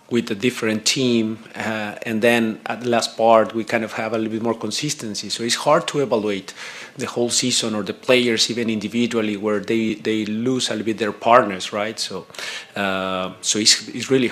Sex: male